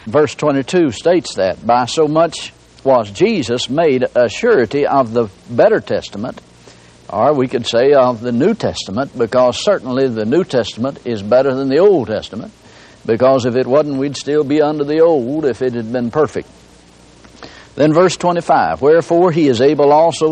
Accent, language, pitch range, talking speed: American, English, 120-170 Hz, 170 wpm